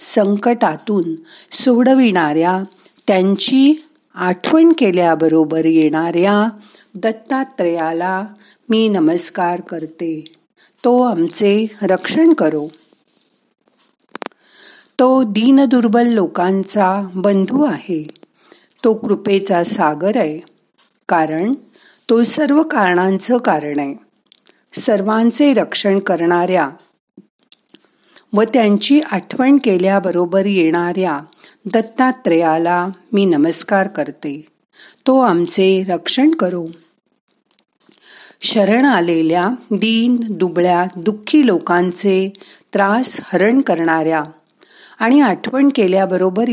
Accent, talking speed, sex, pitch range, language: native, 60 wpm, female, 170-235 Hz, Marathi